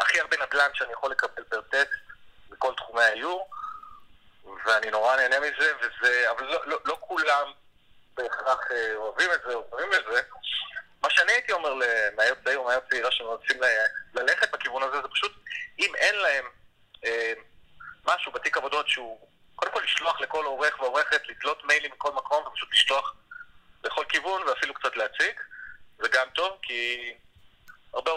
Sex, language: male, Hebrew